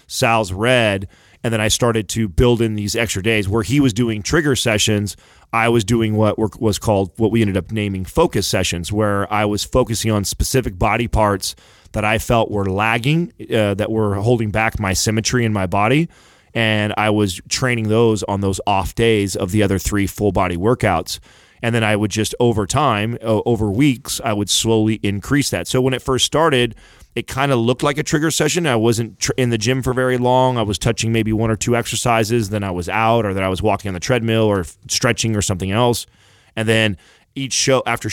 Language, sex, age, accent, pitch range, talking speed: English, male, 30-49, American, 100-120 Hz, 215 wpm